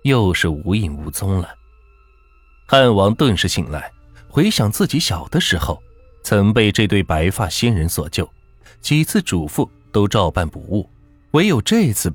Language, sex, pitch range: Chinese, male, 90-140 Hz